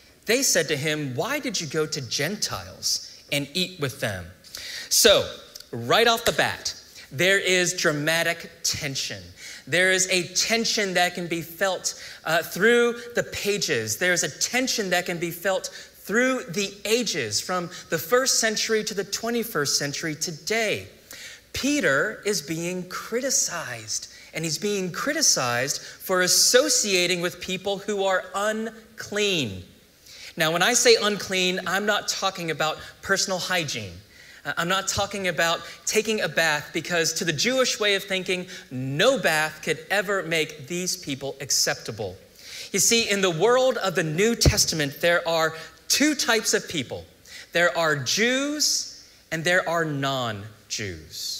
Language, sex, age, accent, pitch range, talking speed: English, male, 30-49, American, 150-210 Hz, 145 wpm